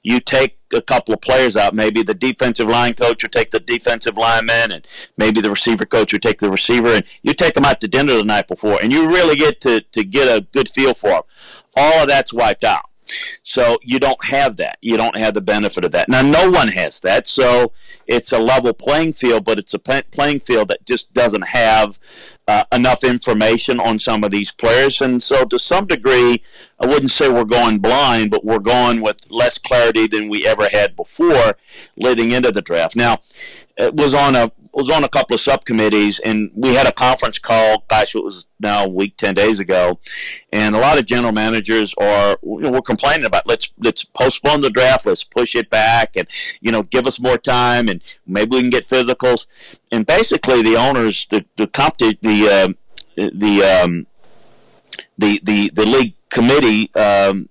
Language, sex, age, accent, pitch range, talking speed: English, male, 50-69, American, 105-130 Hz, 205 wpm